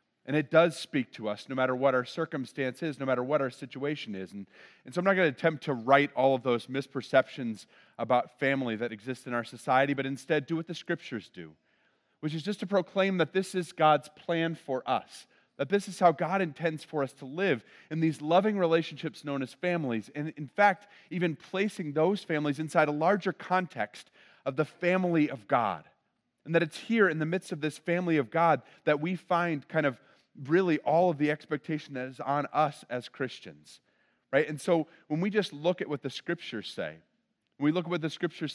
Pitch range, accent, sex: 125-165 Hz, American, male